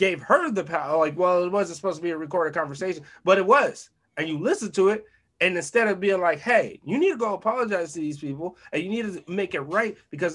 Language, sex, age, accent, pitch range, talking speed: English, male, 30-49, American, 135-170 Hz, 255 wpm